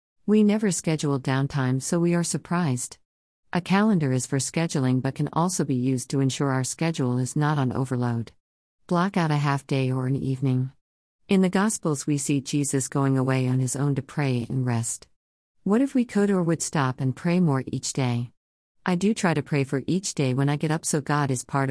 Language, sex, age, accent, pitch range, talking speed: English, female, 50-69, American, 130-165 Hz, 215 wpm